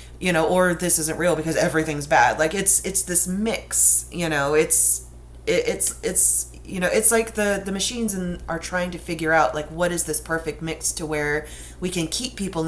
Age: 30-49